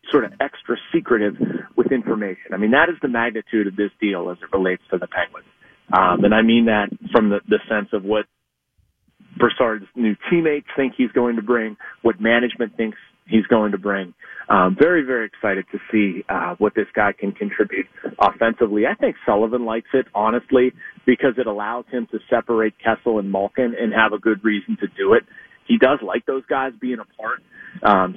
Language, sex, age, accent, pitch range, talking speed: English, male, 40-59, American, 110-155 Hz, 195 wpm